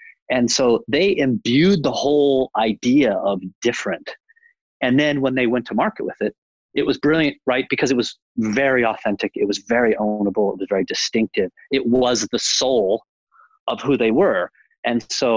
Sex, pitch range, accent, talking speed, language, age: male, 105-145 Hz, American, 175 wpm, English, 30-49